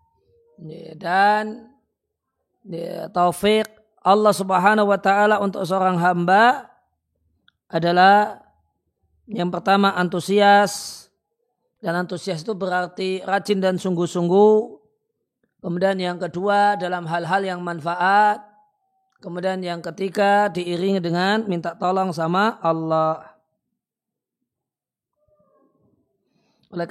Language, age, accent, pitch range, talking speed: Indonesian, 40-59, native, 175-210 Hz, 85 wpm